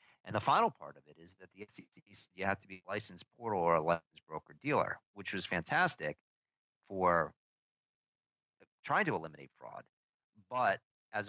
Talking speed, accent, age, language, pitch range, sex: 165 wpm, American, 40-59, English, 80-100 Hz, male